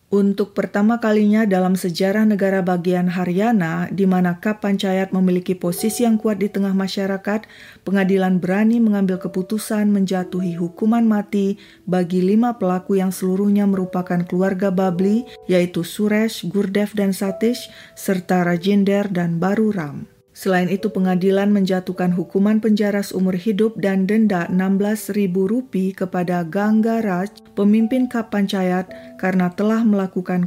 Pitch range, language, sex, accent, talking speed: 185-215 Hz, Indonesian, female, native, 125 wpm